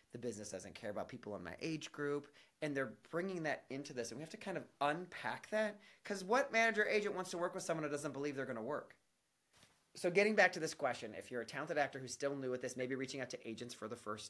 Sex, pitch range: male, 125-160 Hz